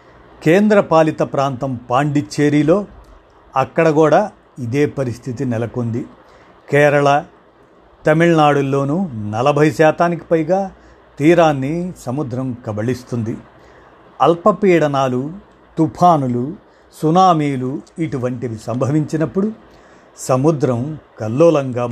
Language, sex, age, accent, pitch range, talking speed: Telugu, male, 50-69, native, 125-160 Hz, 65 wpm